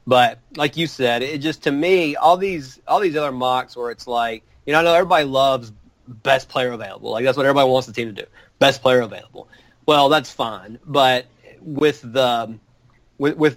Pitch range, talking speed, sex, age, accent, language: 115-135 Hz, 205 wpm, male, 30-49, American, English